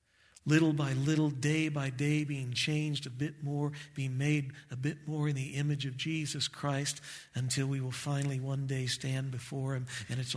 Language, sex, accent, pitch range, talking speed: English, male, American, 115-150 Hz, 190 wpm